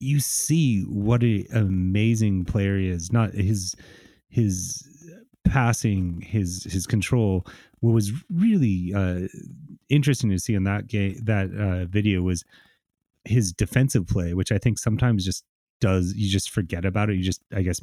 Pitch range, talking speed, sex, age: 95-115 Hz, 150 wpm, male, 30-49